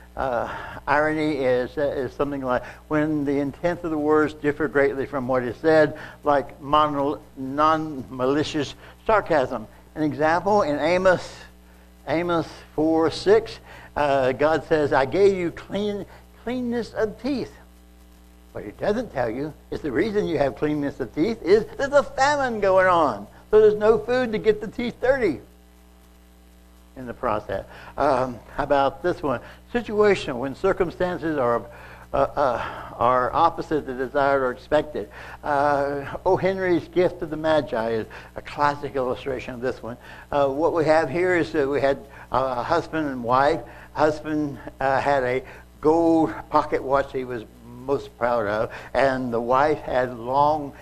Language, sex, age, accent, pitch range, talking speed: English, male, 60-79, American, 130-165 Hz, 155 wpm